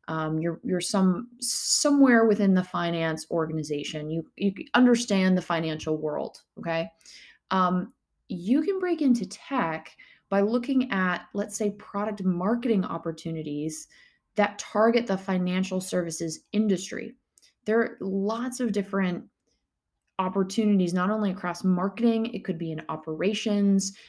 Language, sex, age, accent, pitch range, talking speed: English, female, 20-39, American, 180-240 Hz, 125 wpm